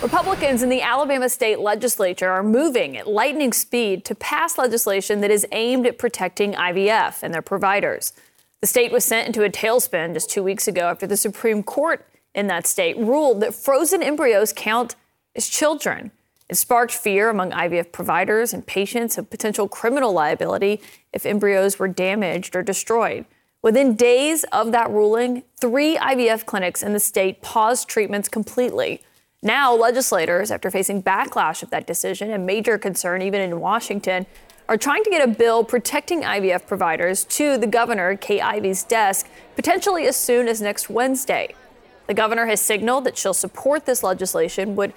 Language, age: English, 30-49